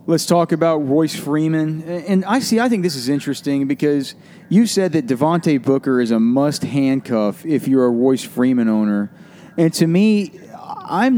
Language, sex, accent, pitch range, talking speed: English, male, American, 135-180 Hz, 175 wpm